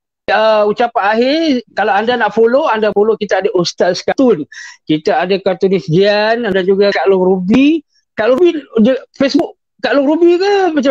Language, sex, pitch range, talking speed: Malay, male, 185-255 Hz, 175 wpm